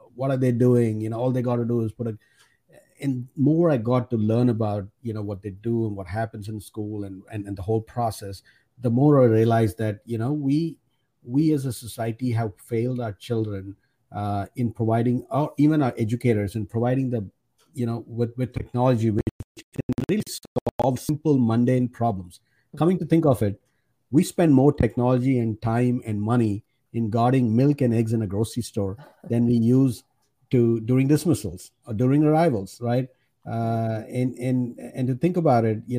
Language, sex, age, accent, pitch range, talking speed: English, male, 50-69, Indian, 115-130 Hz, 190 wpm